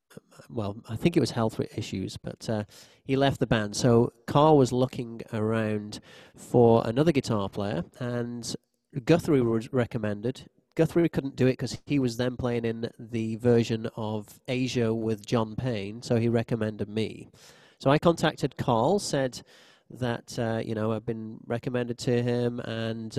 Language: English